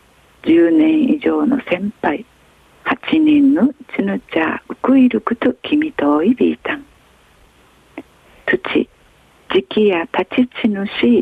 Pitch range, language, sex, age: 185-290 Hz, Japanese, female, 50-69